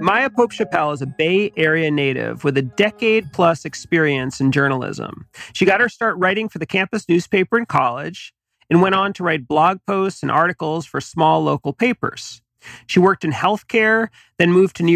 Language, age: English, 40-59